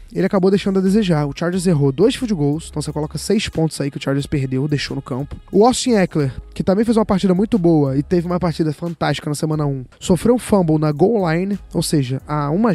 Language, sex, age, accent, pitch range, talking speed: Portuguese, male, 20-39, Brazilian, 155-210 Hz, 250 wpm